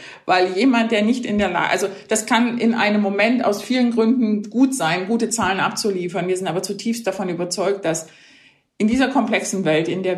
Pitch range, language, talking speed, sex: 175-220 Hz, German, 200 wpm, female